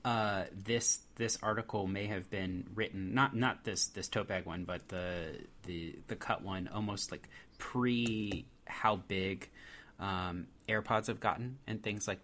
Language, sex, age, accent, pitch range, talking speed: English, male, 30-49, American, 100-115 Hz, 160 wpm